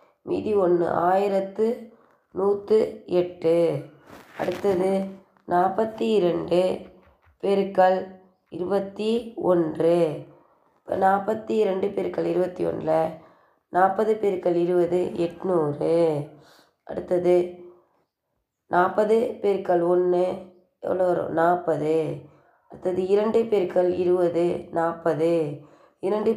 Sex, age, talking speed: female, 20-39, 75 wpm